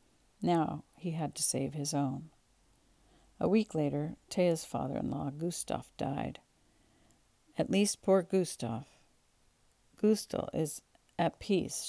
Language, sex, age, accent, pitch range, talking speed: English, female, 50-69, American, 145-175 Hz, 110 wpm